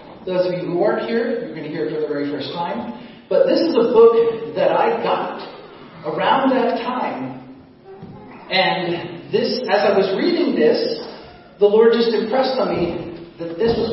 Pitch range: 165-235 Hz